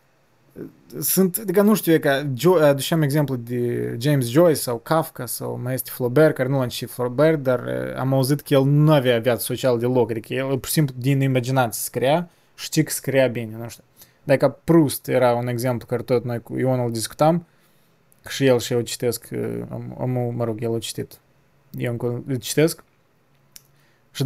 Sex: male